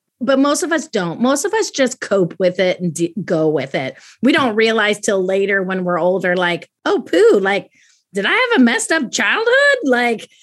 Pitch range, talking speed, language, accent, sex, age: 190-250 Hz, 215 wpm, English, American, female, 30-49